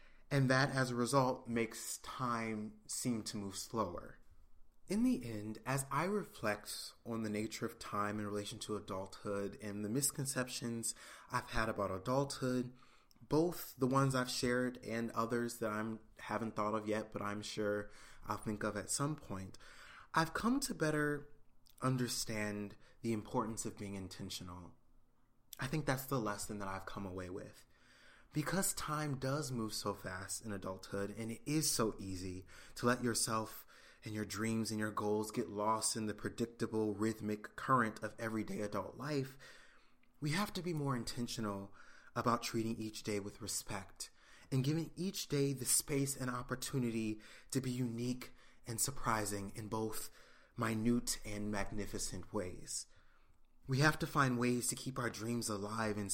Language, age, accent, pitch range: English, 20-39, American, 105-130 Hz